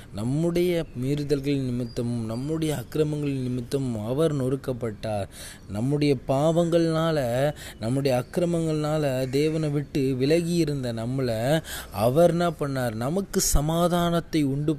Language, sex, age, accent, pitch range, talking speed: Tamil, male, 20-39, native, 120-150 Hz, 90 wpm